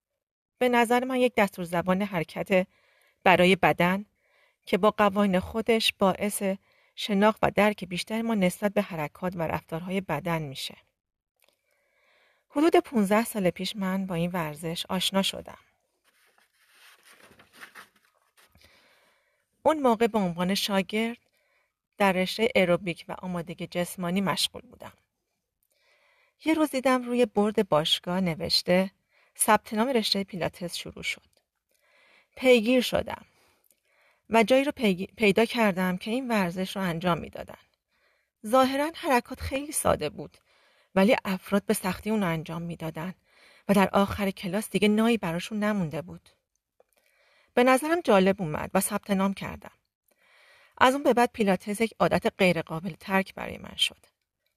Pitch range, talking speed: 180-230 Hz, 130 wpm